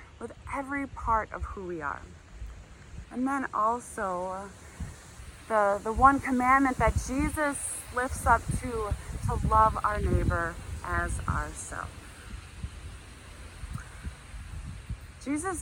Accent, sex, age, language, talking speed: American, female, 30-49, English, 100 wpm